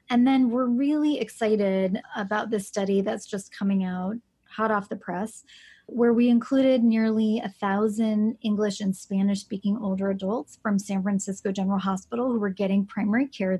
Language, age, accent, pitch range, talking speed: English, 30-49, American, 200-230 Hz, 165 wpm